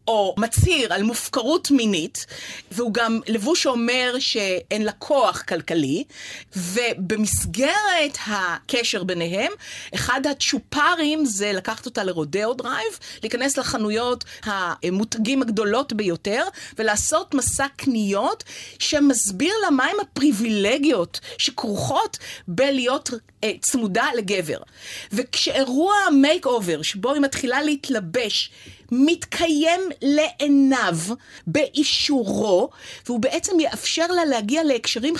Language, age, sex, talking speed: Hebrew, 30-49, female, 95 wpm